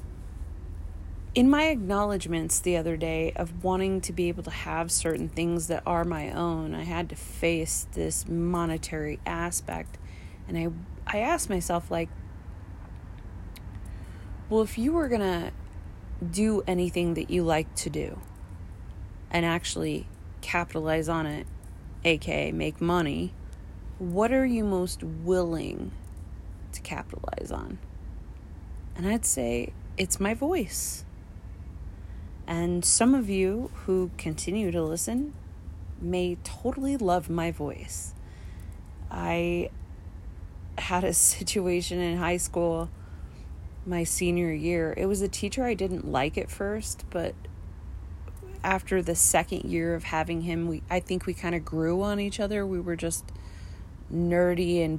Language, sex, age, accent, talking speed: English, female, 30-49, American, 135 wpm